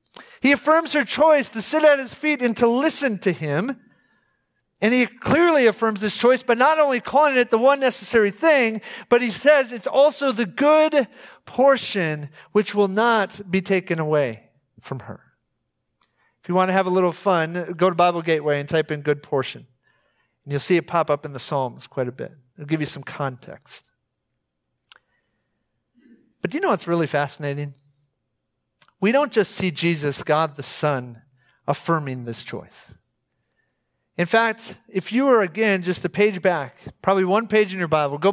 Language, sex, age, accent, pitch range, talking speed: English, male, 40-59, American, 160-250 Hz, 180 wpm